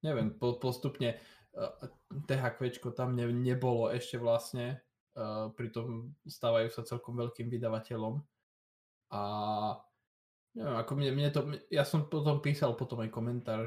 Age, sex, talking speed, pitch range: 20-39, male, 135 wpm, 110-120 Hz